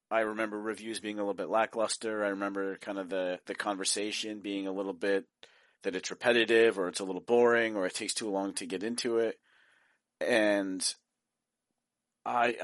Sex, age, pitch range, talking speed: male, 40-59, 90-105 Hz, 180 wpm